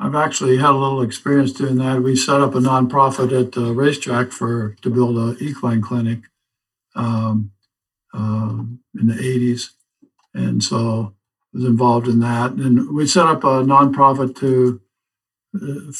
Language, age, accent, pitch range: English, 60-79, American, 110-130 Hz